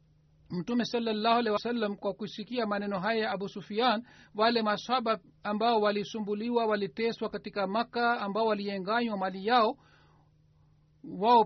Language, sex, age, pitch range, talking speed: Swahili, male, 50-69, 195-225 Hz, 115 wpm